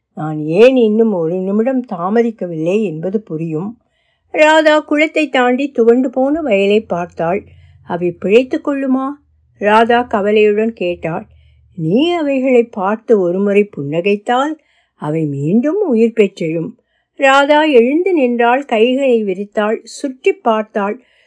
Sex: female